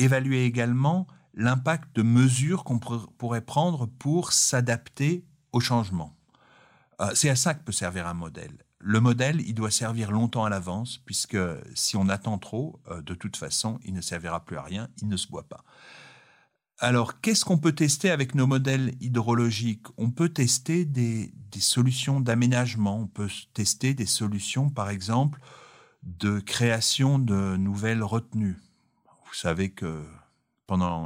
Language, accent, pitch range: French, French, 95-130 Hz